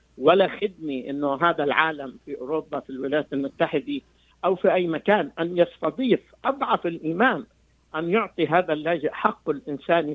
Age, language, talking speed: 50-69, Arabic, 140 wpm